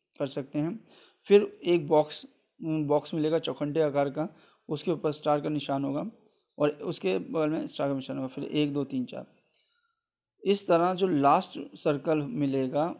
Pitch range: 140-170 Hz